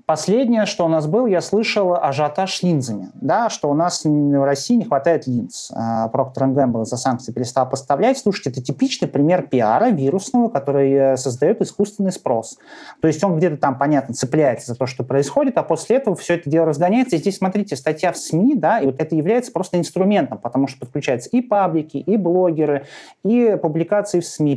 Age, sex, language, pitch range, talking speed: 30-49, male, Russian, 140-195 Hz, 190 wpm